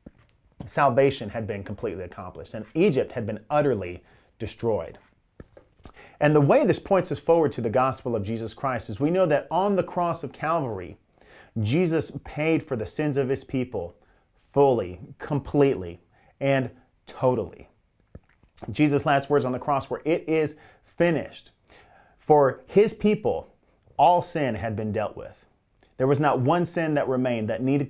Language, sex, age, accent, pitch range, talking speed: English, male, 30-49, American, 120-160 Hz, 155 wpm